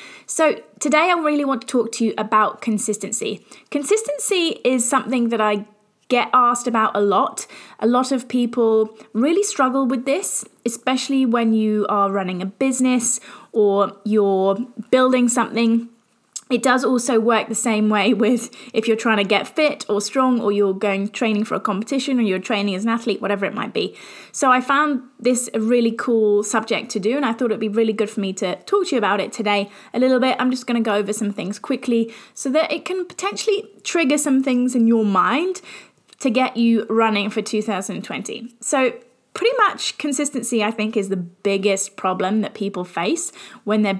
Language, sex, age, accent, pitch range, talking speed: English, female, 20-39, British, 210-255 Hz, 195 wpm